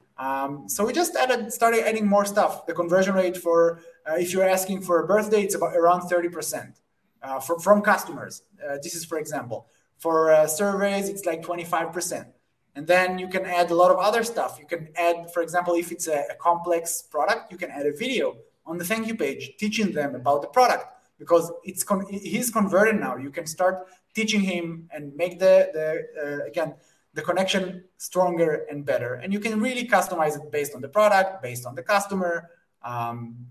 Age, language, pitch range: 20-39, English, 155-195 Hz